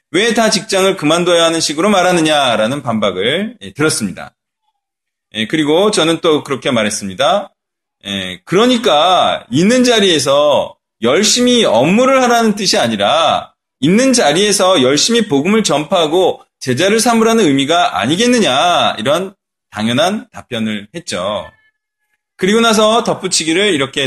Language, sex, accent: Korean, male, native